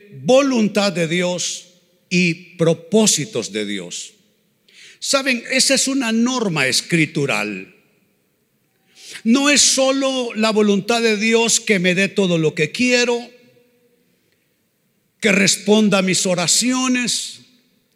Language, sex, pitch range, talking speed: Spanish, male, 180-235 Hz, 105 wpm